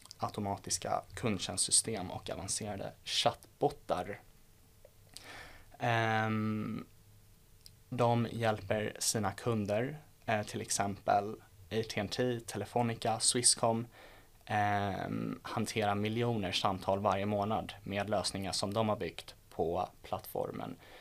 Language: Swedish